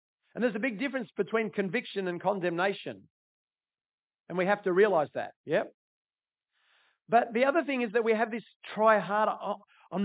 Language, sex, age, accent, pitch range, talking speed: English, male, 50-69, Australian, 195-240 Hz, 175 wpm